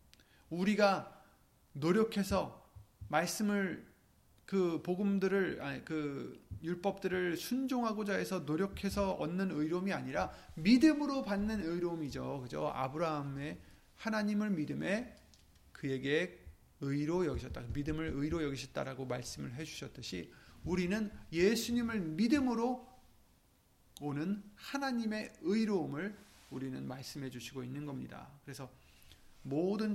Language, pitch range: Korean, 140-195 Hz